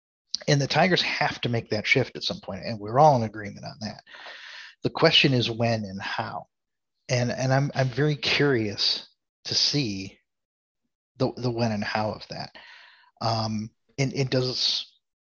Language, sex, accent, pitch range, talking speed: English, male, American, 110-140 Hz, 170 wpm